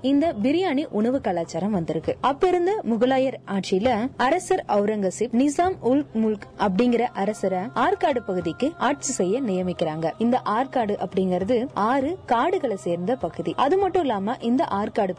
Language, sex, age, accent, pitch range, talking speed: Tamil, female, 20-39, native, 195-280 Hz, 125 wpm